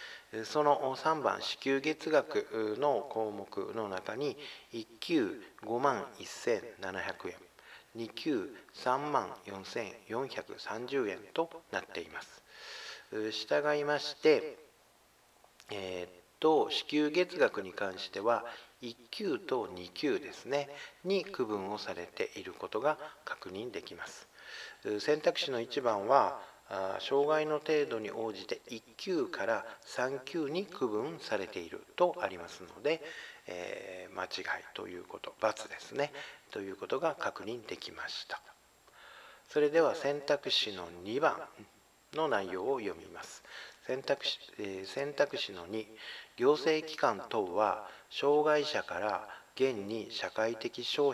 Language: Japanese